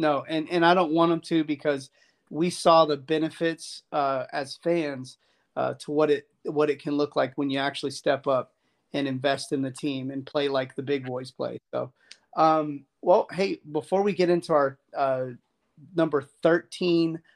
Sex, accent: male, American